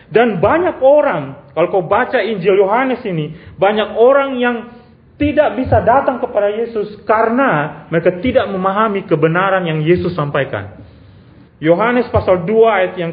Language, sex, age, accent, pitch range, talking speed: Indonesian, male, 30-49, native, 155-255 Hz, 135 wpm